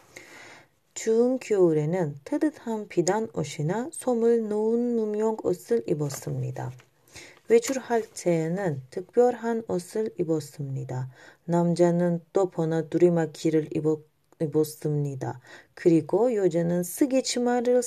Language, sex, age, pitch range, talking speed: Turkish, female, 30-49, 155-230 Hz, 80 wpm